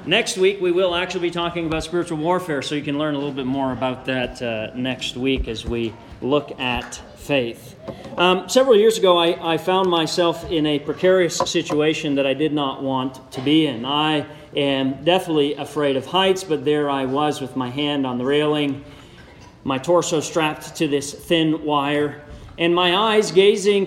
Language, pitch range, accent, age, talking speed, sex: English, 135-185 Hz, American, 40-59, 190 wpm, male